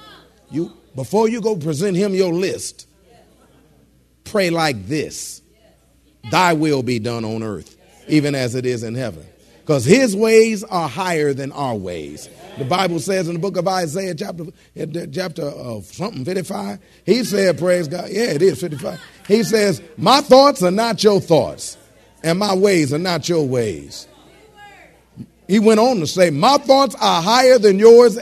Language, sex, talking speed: English, male, 165 wpm